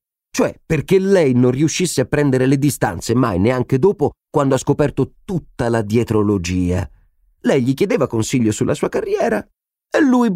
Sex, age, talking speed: male, 40-59, 155 wpm